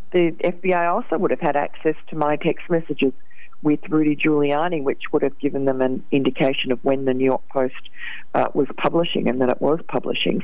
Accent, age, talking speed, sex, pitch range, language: Australian, 40-59, 200 wpm, female, 135-160 Hz, English